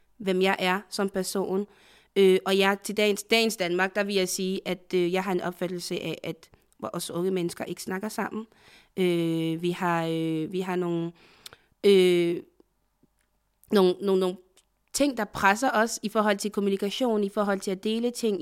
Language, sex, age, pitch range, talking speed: Danish, female, 20-39, 180-205 Hz, 180 wpm